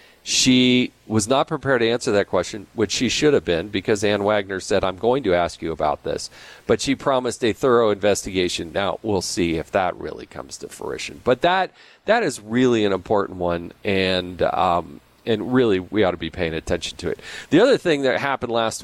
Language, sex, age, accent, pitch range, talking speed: English, male, 40-59, American, 100-125 Hz, 205 wpm